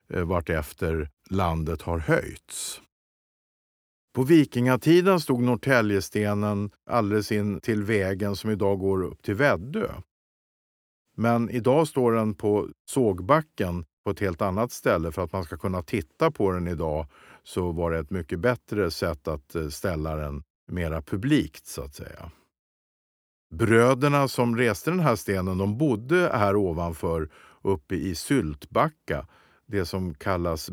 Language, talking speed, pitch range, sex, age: Swedish, 135 wpm, 80-110 Hz, male, 50-69